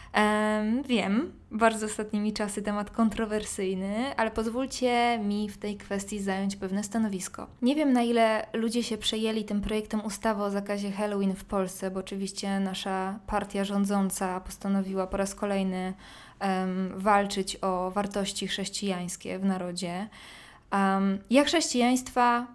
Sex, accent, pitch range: female, native, 195-225 Hz